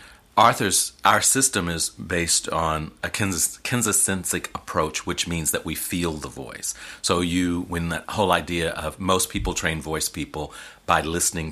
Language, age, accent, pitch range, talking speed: English, 40-59, American, 75-85 Hz, 155 wpm